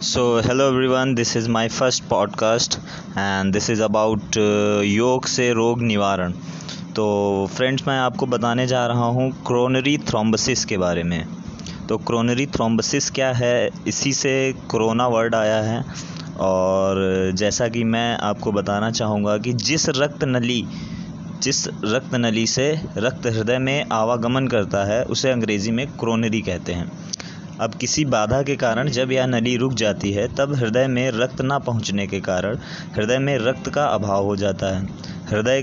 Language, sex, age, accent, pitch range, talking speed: Hindi, male, 20-39, native, 105-130 Hz, 160 wpm